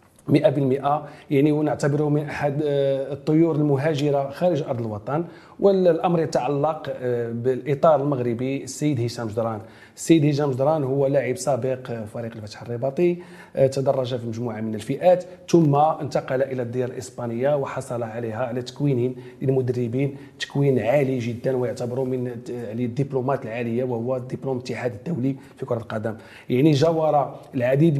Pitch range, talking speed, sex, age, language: 130-165 Hz, 120 wpm, male, 40-59, French